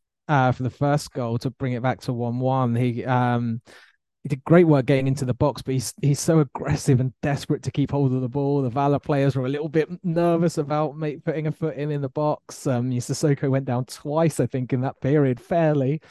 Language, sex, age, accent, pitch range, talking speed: English, male, 20-39, British, 120-145 Hz, 235 wpm